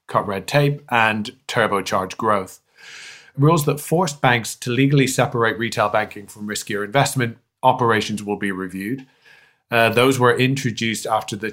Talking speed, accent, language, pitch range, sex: 145 wpm, British, English, 100-120 Hz, male